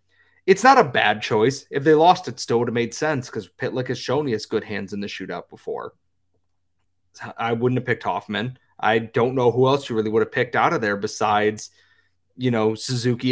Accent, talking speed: American, 210 wpm